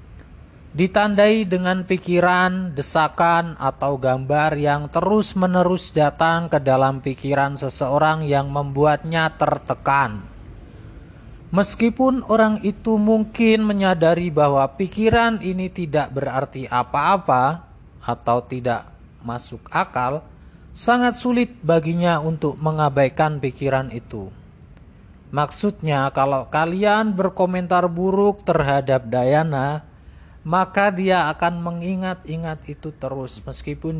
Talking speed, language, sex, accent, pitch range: 95 wpm, Indonesian, male, native, 130-180 Hz